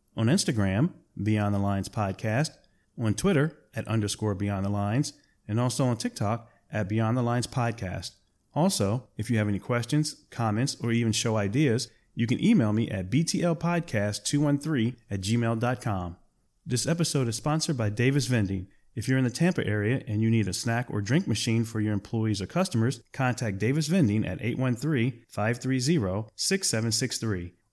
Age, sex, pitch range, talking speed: 30-49, male, 105-130 Hz, 155 wpm